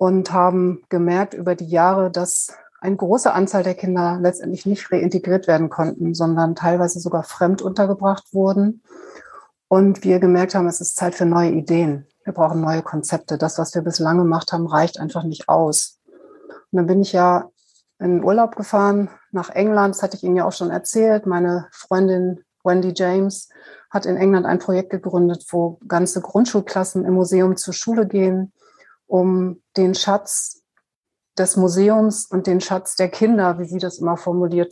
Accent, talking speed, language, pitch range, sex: German, 170 wpm, German, 175-195 Hz, female